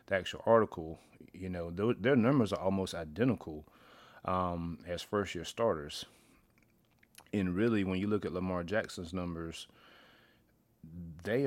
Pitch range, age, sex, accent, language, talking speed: 90-105 Hz, 30-49, male, American, English, 130 wpm